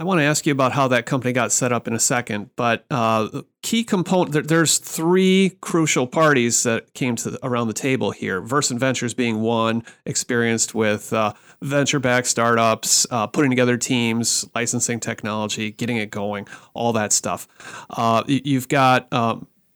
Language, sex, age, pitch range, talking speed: English, male, 30-49, 115-150 Hz, 175 wpm